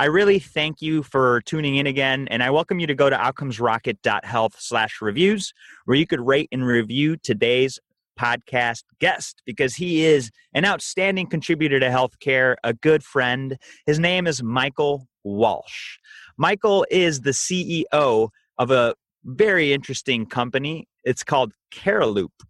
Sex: male